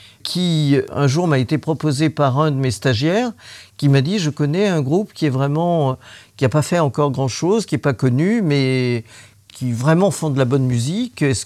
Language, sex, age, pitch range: French, male, 50-69, 125-175 Hz